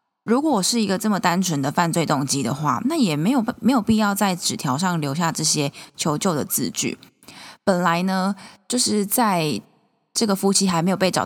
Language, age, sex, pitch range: Chinese, 20-39, female, 155-210 Hz